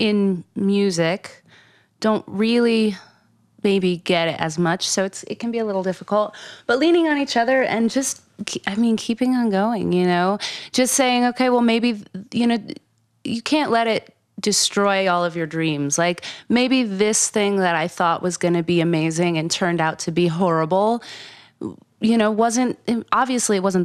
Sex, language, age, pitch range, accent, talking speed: female, English, 30-49, 165-210 Hz, American, 180 wpm